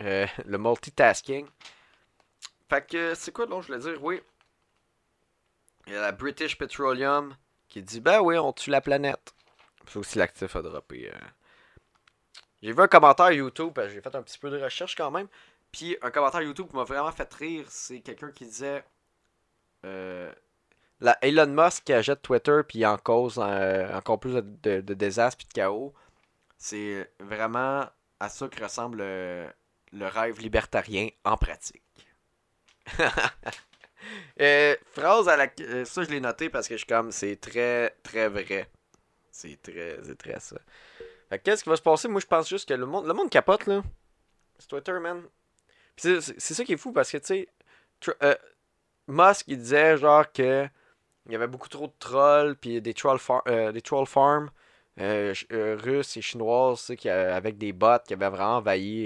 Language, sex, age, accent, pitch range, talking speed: French, male, 20-39, Canadian, 110-150 Hz, 185 wpm